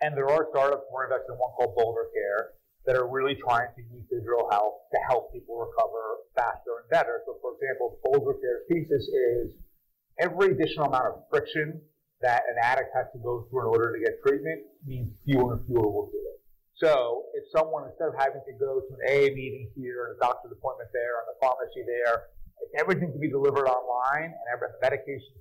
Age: 40-59